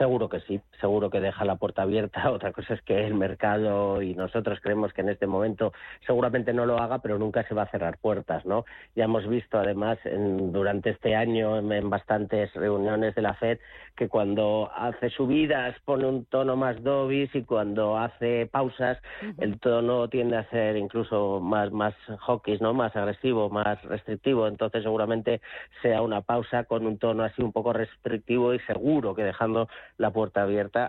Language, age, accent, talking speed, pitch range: Spanish, 40-59, Spanish, 185 wpm, 100-115 Hz